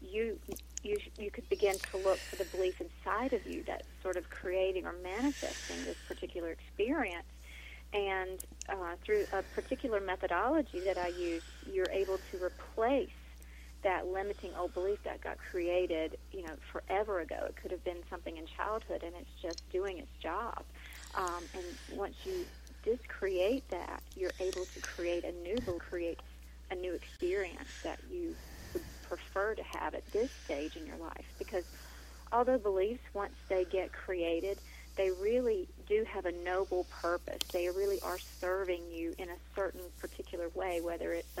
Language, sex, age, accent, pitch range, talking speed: English, female, 40-59, American, 175-200 Hz, 165 wpm